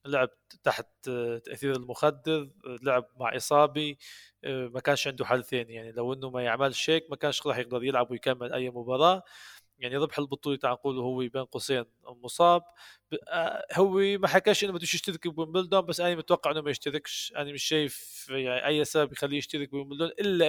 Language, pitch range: Arabic, 125-155 Hz